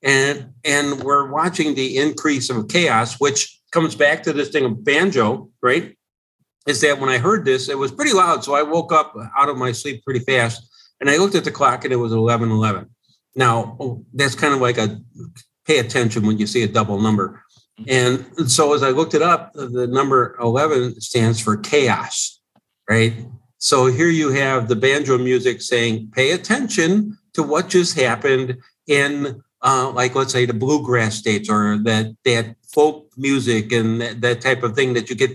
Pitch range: 120-150 Hz